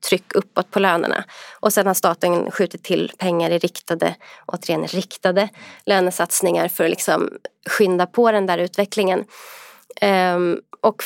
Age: 20-39